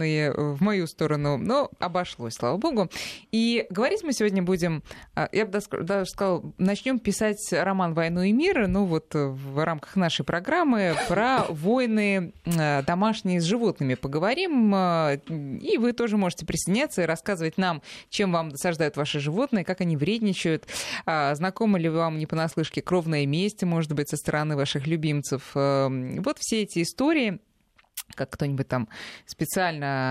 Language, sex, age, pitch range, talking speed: Russian, female, 20-39, 145-200 Hz, 140 wpm